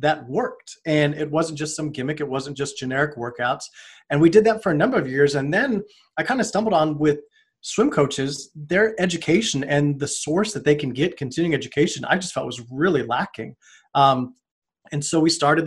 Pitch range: 140-175 Hz